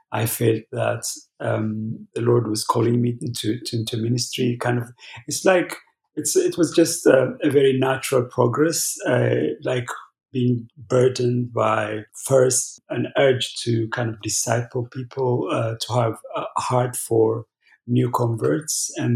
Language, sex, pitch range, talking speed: English, male, 115-125 Hz, 150 wpm